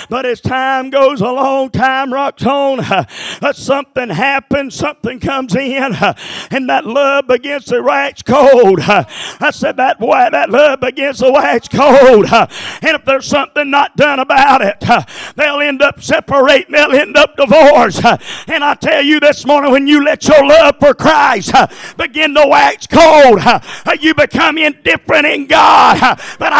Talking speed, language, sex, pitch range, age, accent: 155 wpm, English, male, 275-320 Hz, 50-69, American